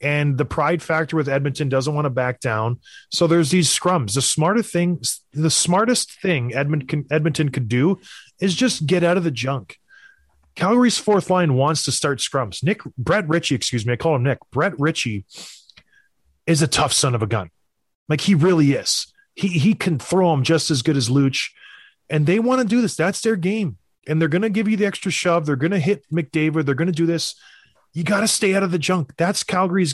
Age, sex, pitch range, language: 30-49, male, 140-185 Hz, English